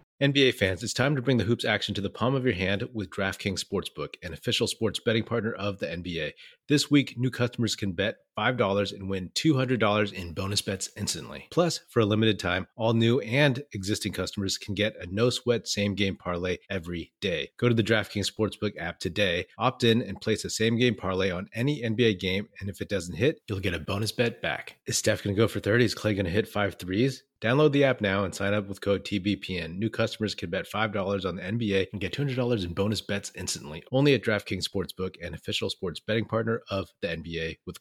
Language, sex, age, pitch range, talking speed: English, male, 30-49, 95-115 Hz, 220 wpm